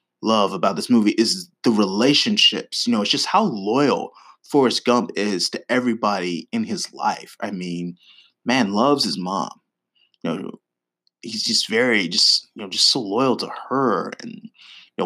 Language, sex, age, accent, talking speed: English, male, 30-49, American, 165 wpm